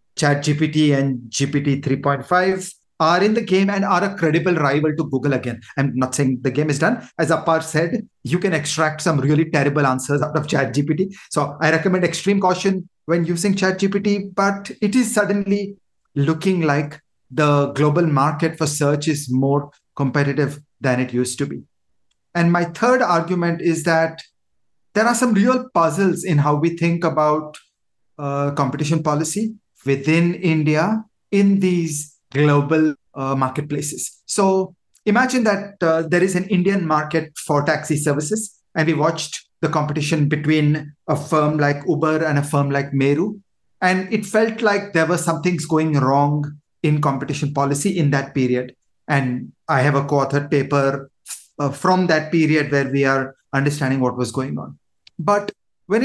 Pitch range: 145-185 Hz